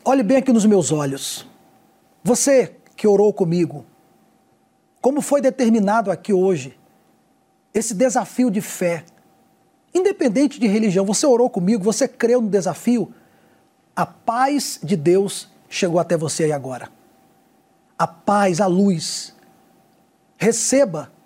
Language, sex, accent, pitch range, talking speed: Portuguese, male, Brazilian, 195-255 Hz, 120 wpm